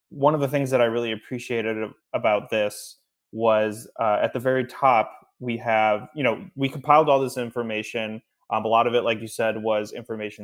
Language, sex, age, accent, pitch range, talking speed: English, male, 20-39, American, 110-130 Hz, 200 wpm